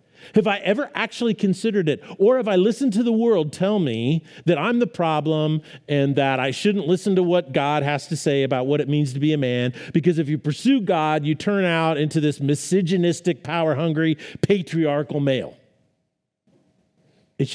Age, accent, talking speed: 40-59, American, 180 wpm